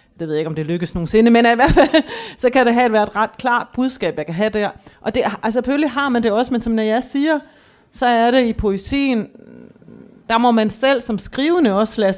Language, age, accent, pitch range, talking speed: Danish, 30-49, native, 185-240 Hz, 230 wpm